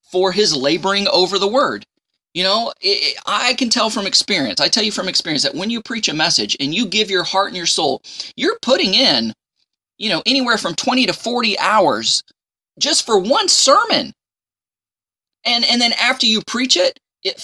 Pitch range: 145-225 Hz